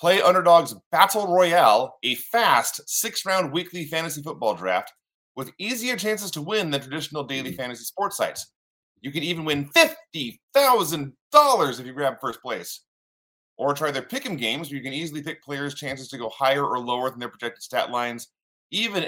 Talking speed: 175 wpm